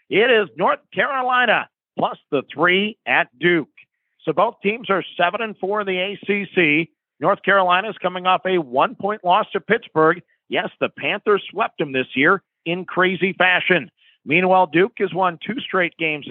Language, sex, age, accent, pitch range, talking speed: English, male, 50-69, American, 175-210 Hz, 170 wpm